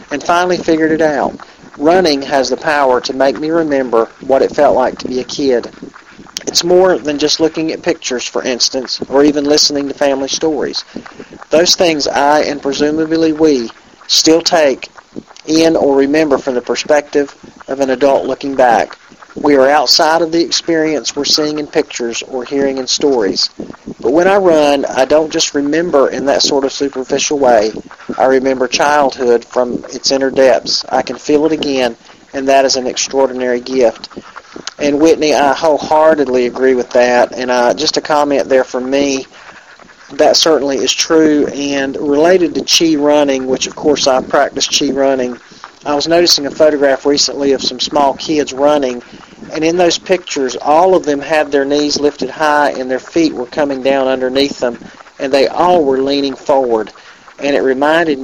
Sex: male